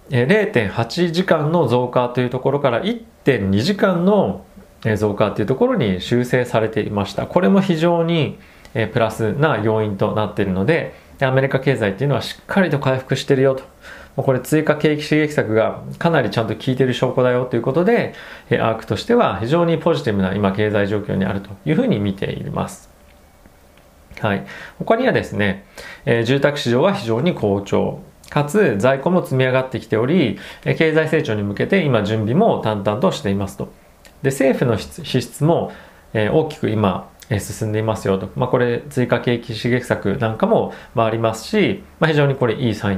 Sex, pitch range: male, 105-155 Hz